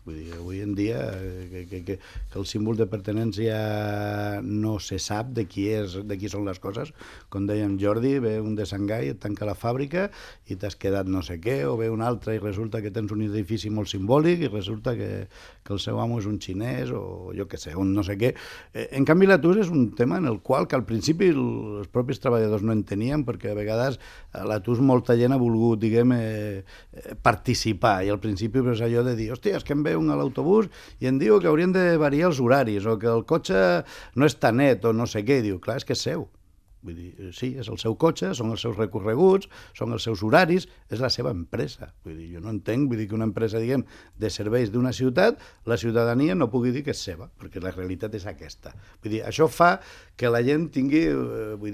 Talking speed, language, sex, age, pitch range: 220 wpm, Spanish, male, 60-79, 105-130 Hz